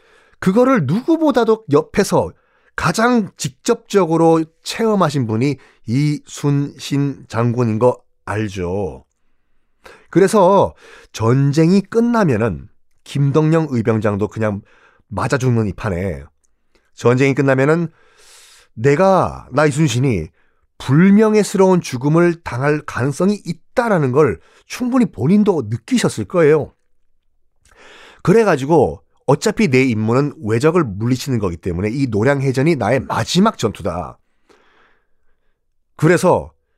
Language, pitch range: Korean, 115-190 Hz